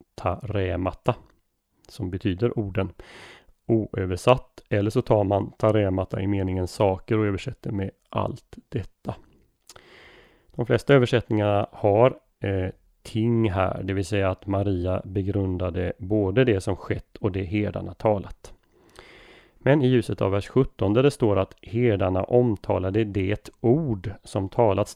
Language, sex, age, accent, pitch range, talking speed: Swedish, male, 30-49, native, 95-115 Hz, 135 wpm